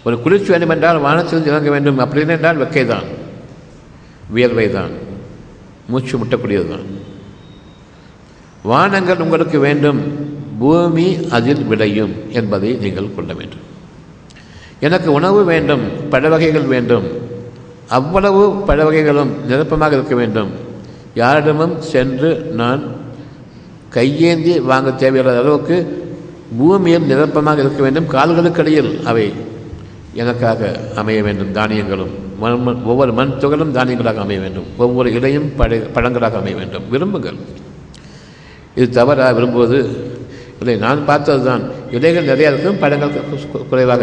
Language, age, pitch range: Tamil, 60-79, 120-160 Hz